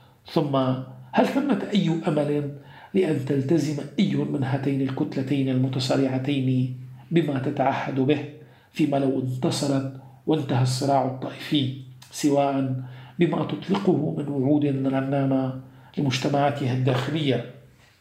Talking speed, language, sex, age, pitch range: 95 wpm, Arabic, male, 50-69, 130-145 Hz